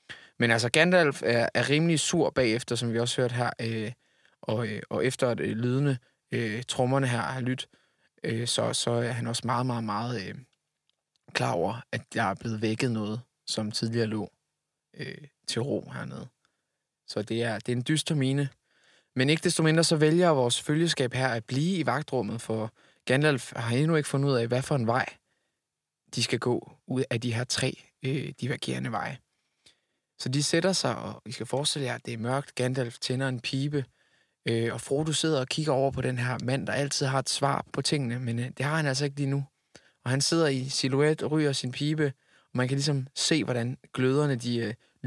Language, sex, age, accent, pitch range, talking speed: Danish, male, 20-39, native, 120-145 Hz, 190 wpm